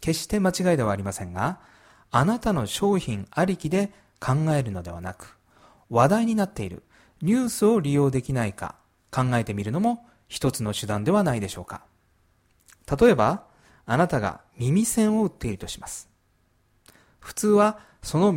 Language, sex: Japanese, male